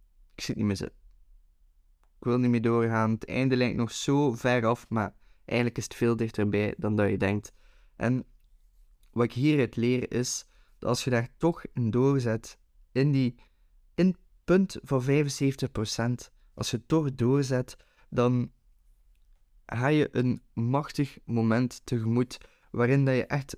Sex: male